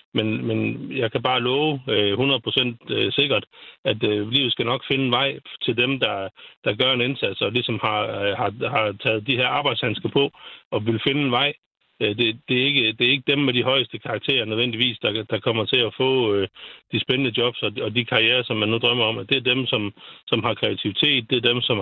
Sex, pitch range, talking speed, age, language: male, 110-130 Hz, 215 wpm, 60-79, Danish